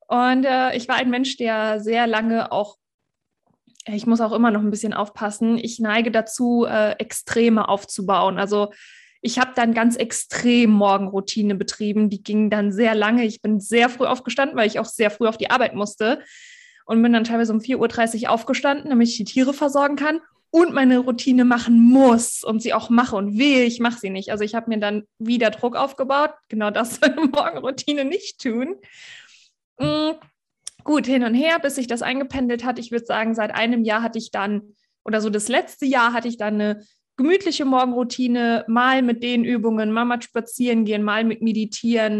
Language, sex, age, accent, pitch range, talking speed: German, female, 20-39, German, 220-255 Hz, 190 wpm